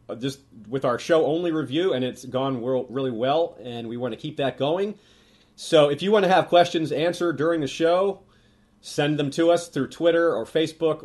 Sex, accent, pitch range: male, American, 120-155 Hz